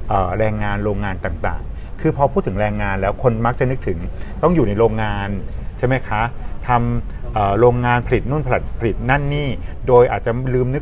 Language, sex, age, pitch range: Thai, male, 30-49, 100-130 Hz